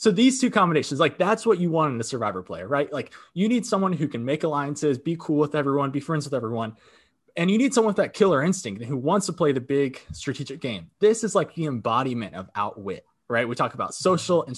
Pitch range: 130-185 Hz